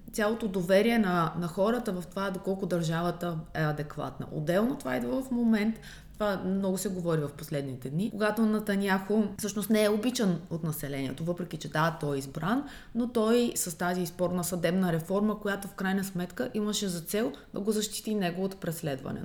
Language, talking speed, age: Bulgarian, 180 wpm, 20-39